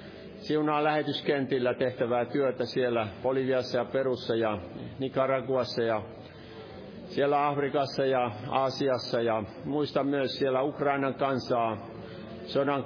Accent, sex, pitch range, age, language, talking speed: native, male, 115-140 Hz, 50-69, Finnish, 105 wpm